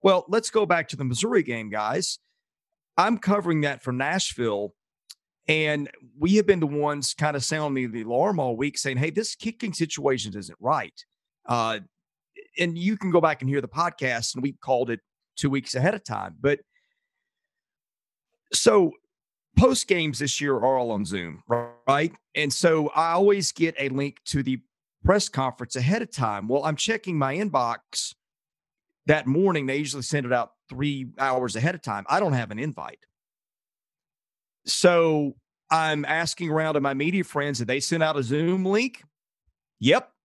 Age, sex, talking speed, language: 40-59, male, 175 wpm, English